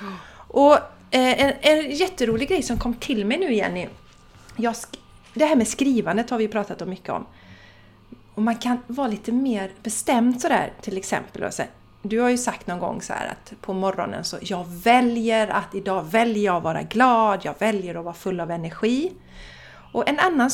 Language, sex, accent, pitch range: Swedish, female, native, 185-250 Hz